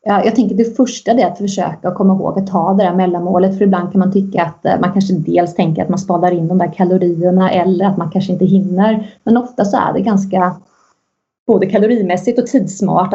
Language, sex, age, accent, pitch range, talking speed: Swedish, female, 20-39, native, 180-200 Hz, 215 wpm